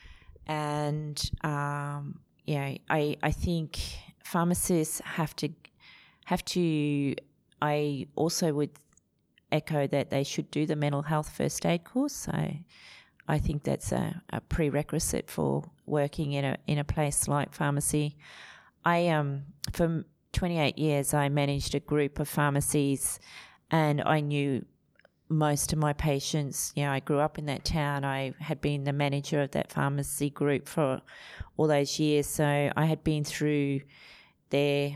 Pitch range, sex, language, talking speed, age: 145-160 Hz, female, English, 150 wpm, 30-49